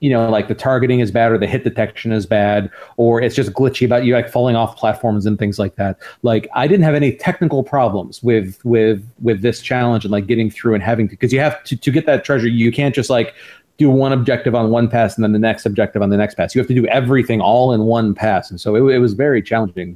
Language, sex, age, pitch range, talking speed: English, male, 30-49, 110-135 Hz, 270 wpm